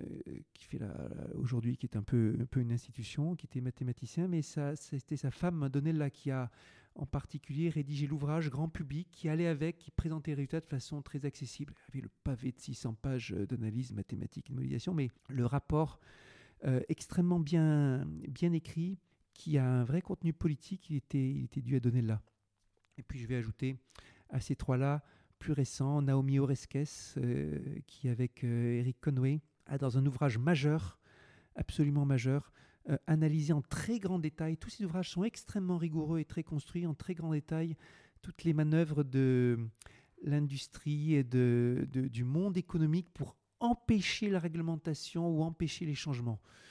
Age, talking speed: 50-69, 170 wpm